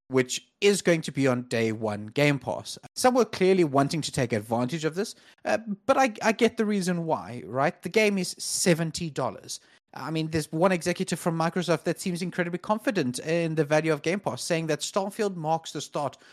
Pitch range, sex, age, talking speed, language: 130-180 Hz, male, 30-49, 200 wpm, English